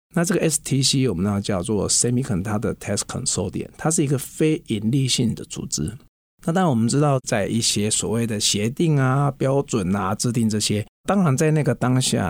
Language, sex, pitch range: Chinese, male, 105-150 Hz